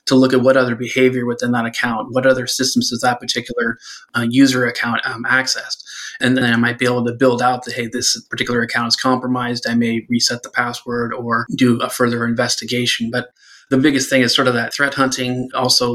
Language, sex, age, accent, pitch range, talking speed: English, male, 20-39, American, 120-125 Hz, 215 wpm